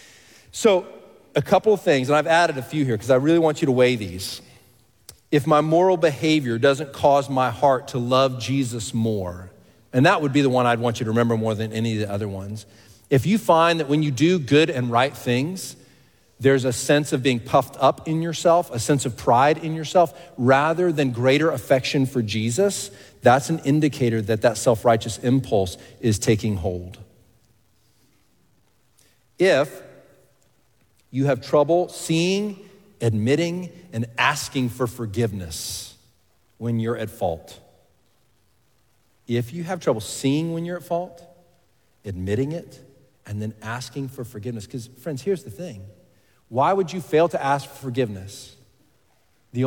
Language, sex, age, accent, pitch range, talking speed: English, male, 40-59, American, 115-150 Hz, 165 wpm